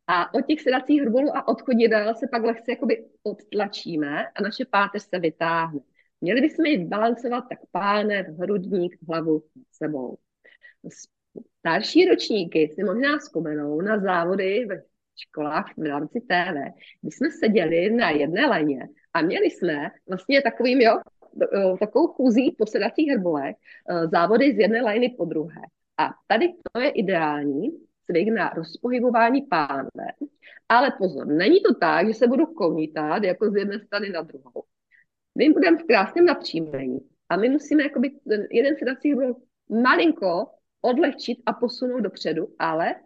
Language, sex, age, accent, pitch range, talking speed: Czech, female, 30-49, native, 180-290 Hz, 145 wpm